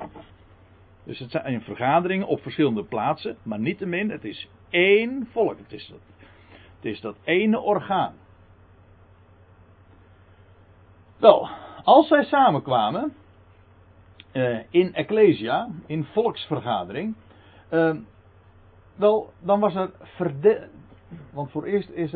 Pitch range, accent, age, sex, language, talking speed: 95-160 Hz, Dutch, 60-79, male, Dutch, 115 wpm